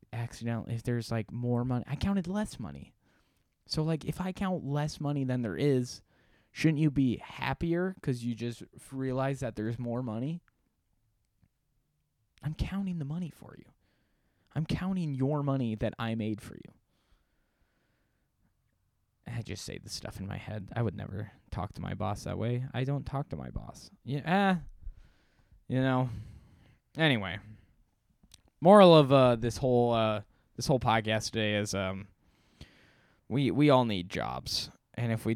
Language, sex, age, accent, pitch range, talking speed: English, male, 20-39, American, 110-145 Hz, 160 wpm